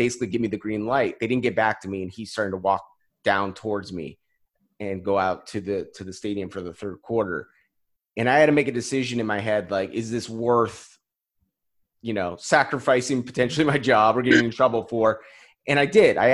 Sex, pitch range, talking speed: male, 110-155 Hz, 225 wpm